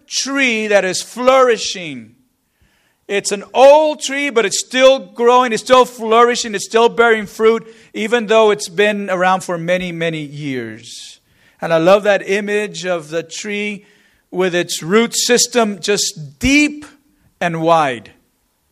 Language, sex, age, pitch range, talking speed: English, male, 40-59, 165-220 Hz, 140 wpm